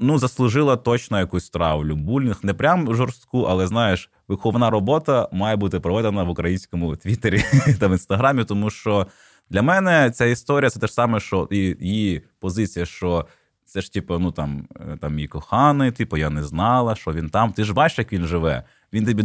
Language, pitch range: Ukrainian, 95-135 Hz